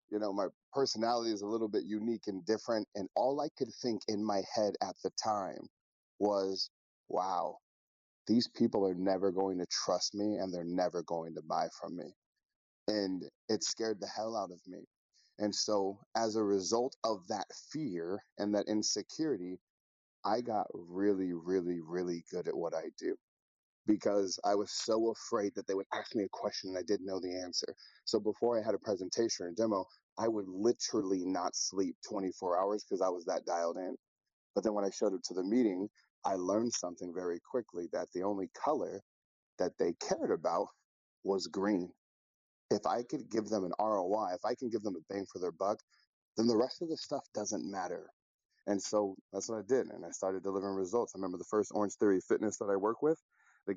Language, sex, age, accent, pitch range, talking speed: English, male, 30-49, American, 95-110 Hz, 200 wpm